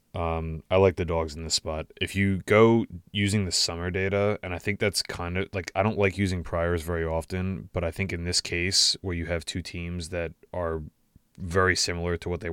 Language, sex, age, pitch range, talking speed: English, male, 20-39, 85-95 Hz, 220 wpm